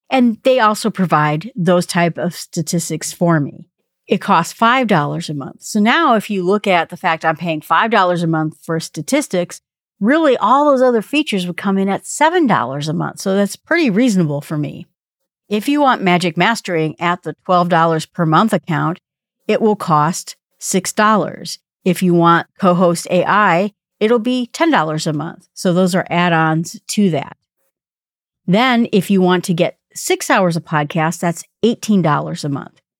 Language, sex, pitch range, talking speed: English, female, 165-200 Hz, 170 wpm